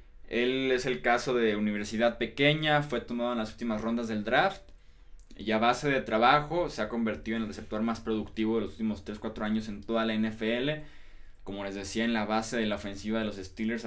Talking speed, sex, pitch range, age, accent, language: 210 wpm, male, 105-125 Hz, 20-39, Mexican, Spanish